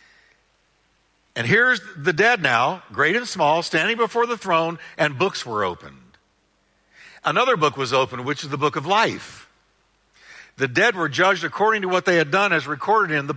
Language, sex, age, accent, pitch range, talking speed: English, male, 60-79, American, 150-220 Hz, 180 wpm